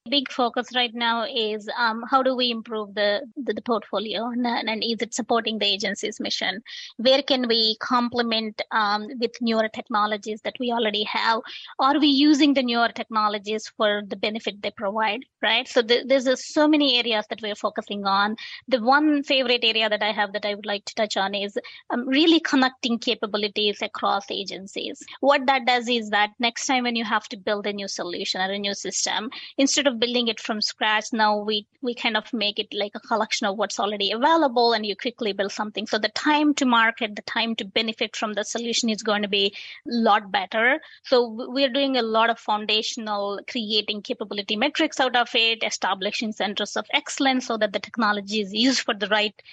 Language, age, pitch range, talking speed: English, 20-39, 210-250 Hz, 200 wpm